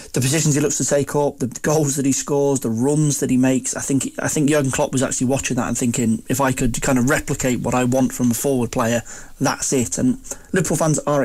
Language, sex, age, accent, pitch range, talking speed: English, male, 20-39, British, 125-140 Hz, 255 wpm